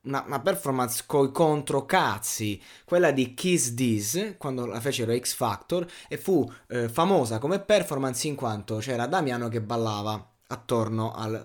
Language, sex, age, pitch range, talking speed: Italian, male, 20-39, 115-135 Hz, 145 wpm